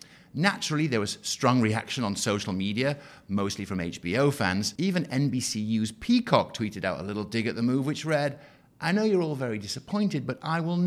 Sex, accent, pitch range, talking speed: male, British, 105-155 Hz, 190 wpm